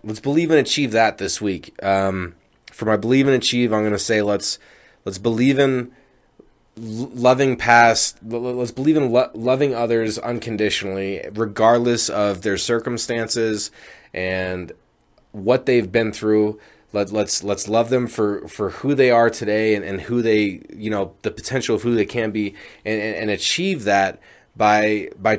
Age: 20-39